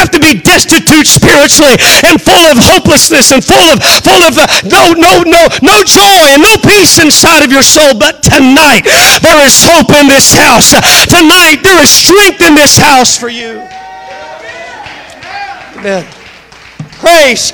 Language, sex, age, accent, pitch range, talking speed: English, male, 50-69, American, 205-255 Hz, 155 wpm